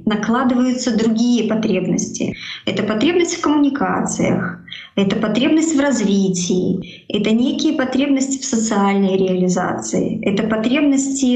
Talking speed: 100 wpm